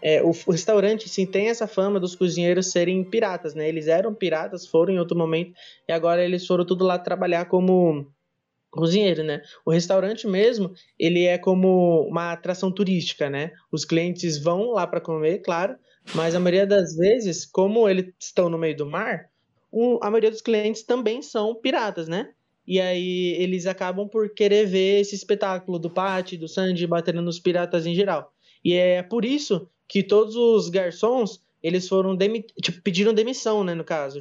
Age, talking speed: 20-39, 175 wpm